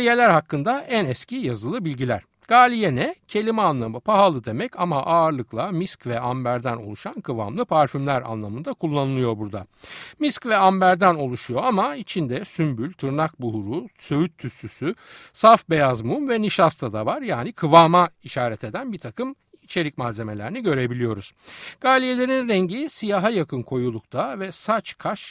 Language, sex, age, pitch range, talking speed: Turkish, male, 60-79, 120-200 Hz, 140 wpm